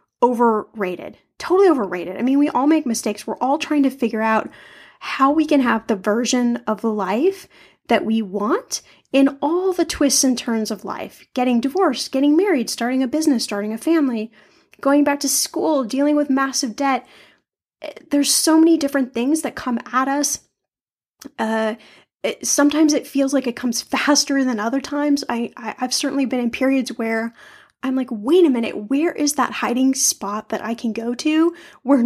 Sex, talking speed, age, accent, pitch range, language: female, 180 wpm, 10-29, American, 230-290 Hz, English